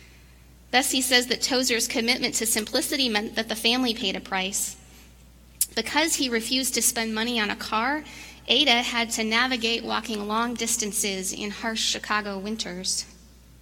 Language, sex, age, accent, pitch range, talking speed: English, female, 30-49, American, 190-250 Hz, 150 wpm